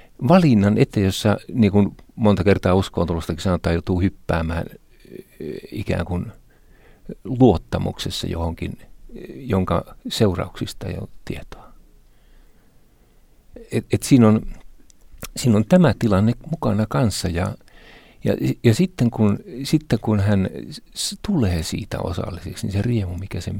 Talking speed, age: 105 wpm, 50-69